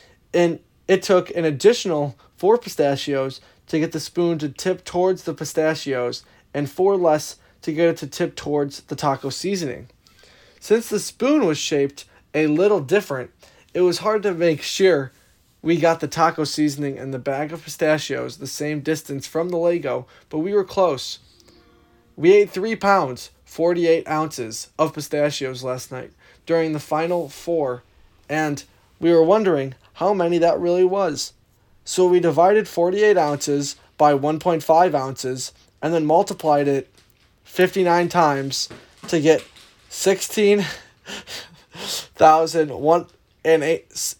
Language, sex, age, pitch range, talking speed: English, male, 20-39, 140-175 Hz, 145 wpm